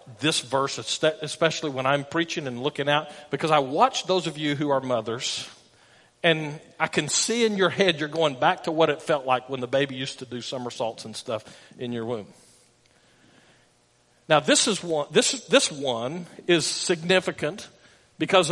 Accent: American